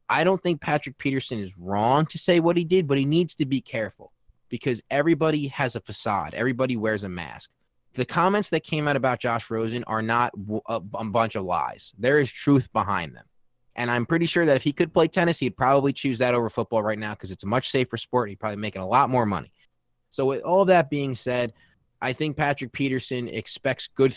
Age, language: 20-39, English